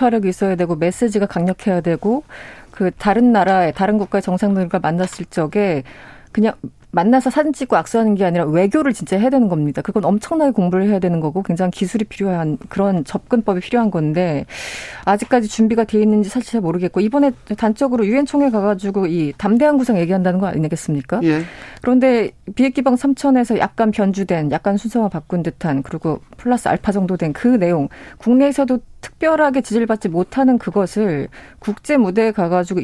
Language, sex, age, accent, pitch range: Korean, female, 30-49, native, 180-245 Hz